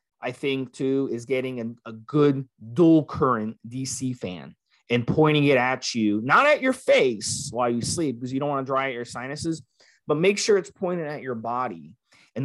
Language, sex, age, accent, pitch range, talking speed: English, male, 20-39, American, 115-165 Hz, 200 wpm